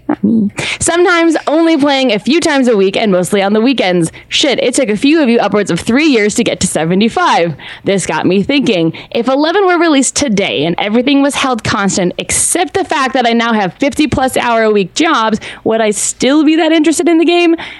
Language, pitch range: English, 195-280 Hz